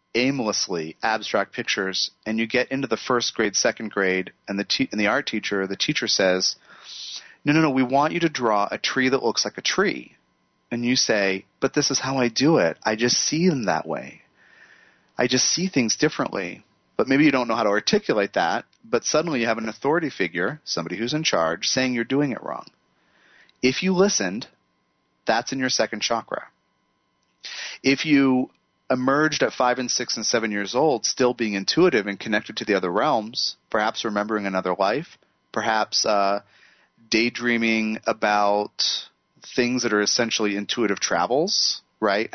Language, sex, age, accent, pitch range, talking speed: English, male, 30-49, American, 100-130 Hz, 180 wpm